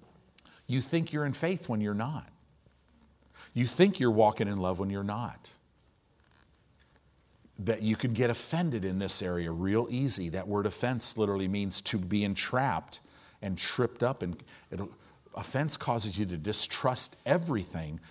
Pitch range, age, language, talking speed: 100-150 Hz, 50-69, English, 150 wpm